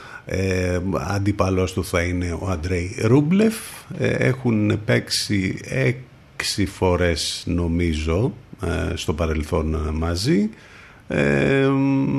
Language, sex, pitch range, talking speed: Greek, male, 80-110 Hz, 90 wpm